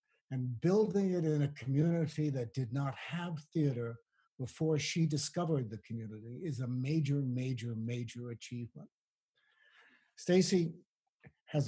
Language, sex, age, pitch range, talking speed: English, male, 60-79, 130-165 Hz, 125 wpm